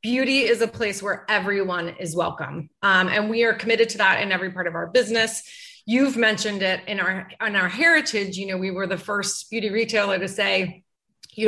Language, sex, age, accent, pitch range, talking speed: English, female, 30-49, American, 185-235 Hz, 210 wpm